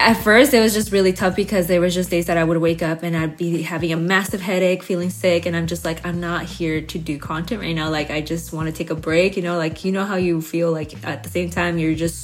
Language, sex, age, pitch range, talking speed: English, female, 20-39, 170-225 Hz, 300 wpm